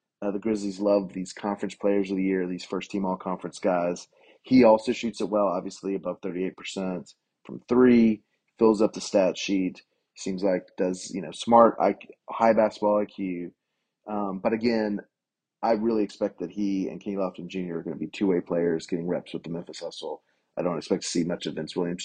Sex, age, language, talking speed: male, 30-49, English, 190 wpm